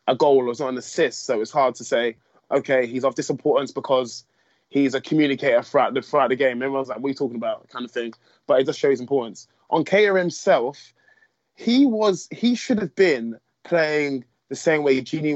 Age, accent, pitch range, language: 20-39, British, 130-175 Hz, English